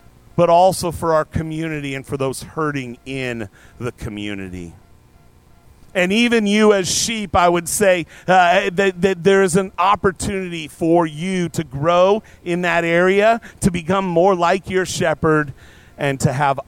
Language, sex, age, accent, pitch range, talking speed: English, male, 40-59, American, 150-200 Hz, 155 wpm